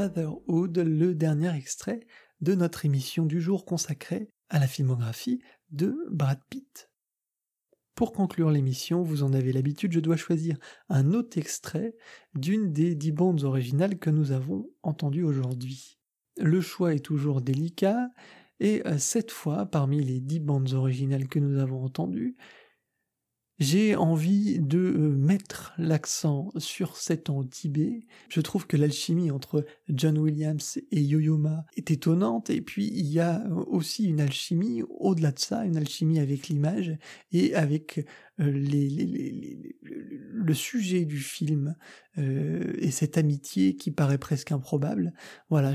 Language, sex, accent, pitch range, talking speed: French, male, French, 145-180 Hz, 145 wpm